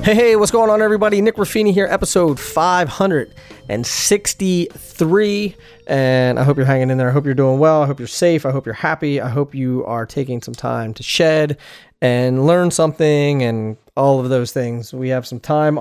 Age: 30-49